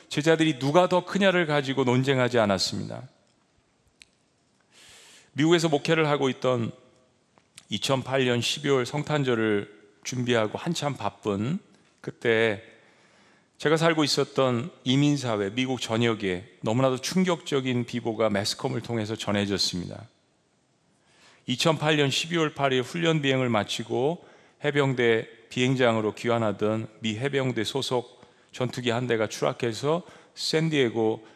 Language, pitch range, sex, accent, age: Korean, 110-140 Hz, male, native, 40-59